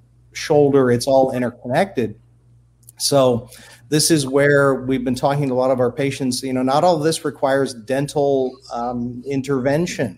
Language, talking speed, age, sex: English, 160 wpm, 40-59, male